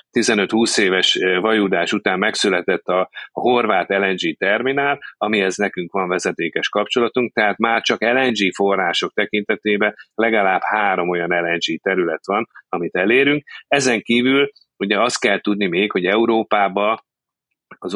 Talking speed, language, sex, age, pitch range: 135 wpm, Hungarian, male, 30-49, 90-115 Hz